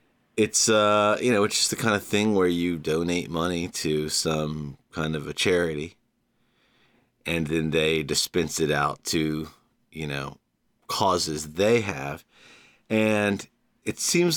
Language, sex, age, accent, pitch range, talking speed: English, male, 30-49, American, 80-115 Hz, 145 wpm